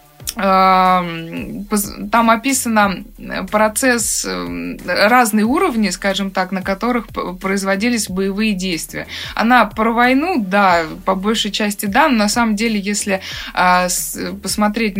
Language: Russian